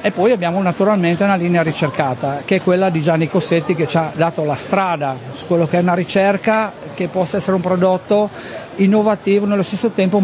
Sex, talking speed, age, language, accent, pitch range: male, 200 wpm, 50-69, Italian, native, 170-210 Hz